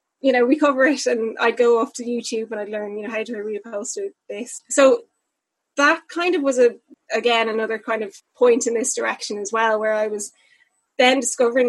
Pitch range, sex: 205-250 Hz, female